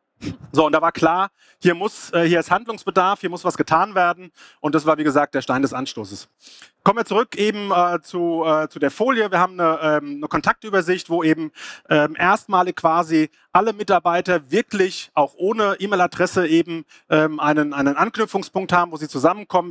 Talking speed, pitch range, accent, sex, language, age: 185 wpm, 160-190 Hz, German, male, German, 30-49